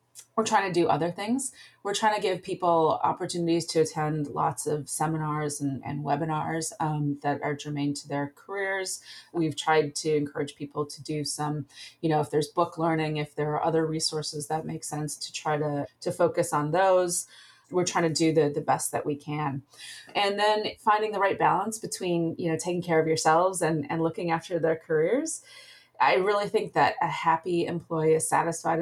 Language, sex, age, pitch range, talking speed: English, female, 30-49, 150-175 Hz, 195 wpm